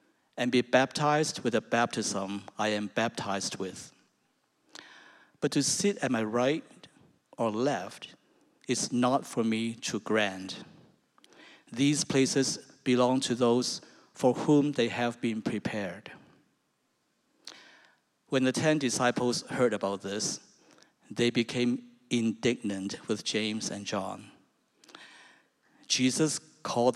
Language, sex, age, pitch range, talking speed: English, male, 50-69, 115-135 Hz, 115 wpm